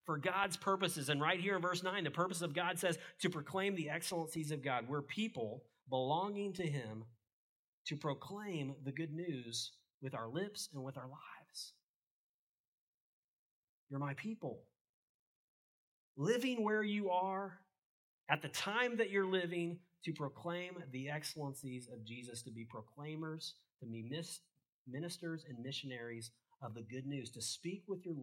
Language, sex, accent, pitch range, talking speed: English, male, American, 125-185 Hz, 155 wpm